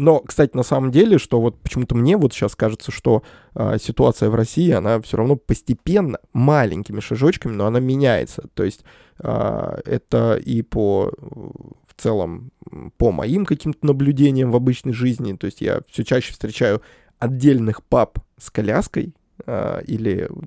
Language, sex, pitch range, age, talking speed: Russian, male, 115-135 Hz, 20-39, 155 wpm